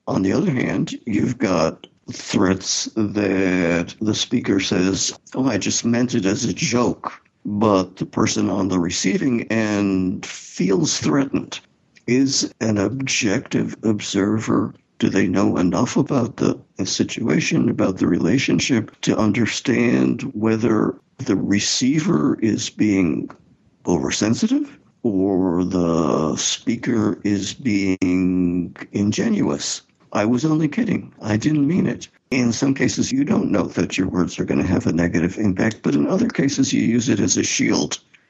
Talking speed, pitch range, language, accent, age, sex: 140 wpm, 90-120 Hz, English, American, 60-79, male